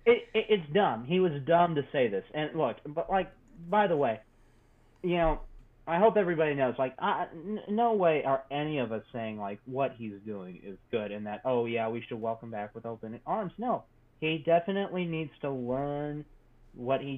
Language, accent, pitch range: English, American, 120-160 Hz